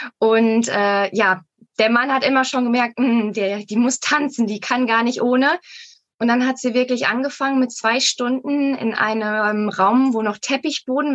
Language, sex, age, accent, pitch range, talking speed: German, female, 20-39, German, 210-260 Hz, 170 wpm